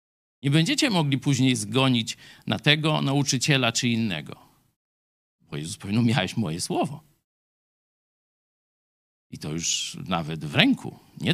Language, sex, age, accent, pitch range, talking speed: Polish, male, 50-69, native, 120-165 Hz, 120 wpm